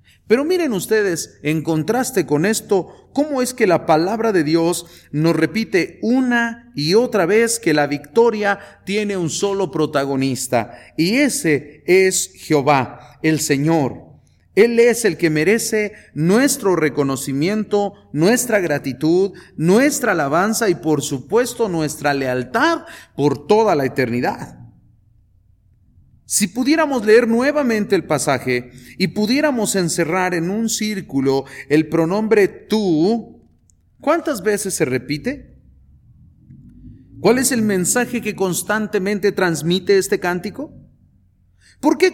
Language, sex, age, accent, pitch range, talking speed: English, male, 40-59, Mexican, 140-215 Hz, 120 wpm